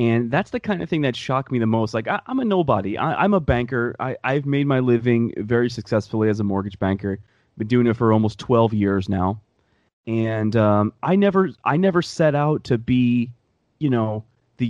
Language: English